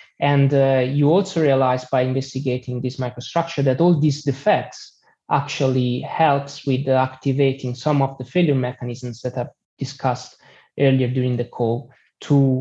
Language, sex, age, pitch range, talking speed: English, male, 20-39, 130-150 Hz, 145 wpm